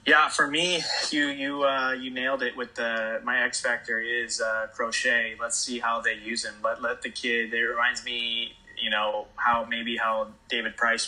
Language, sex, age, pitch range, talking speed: English, male, 20-39, 105-115 Hz, 200 wpm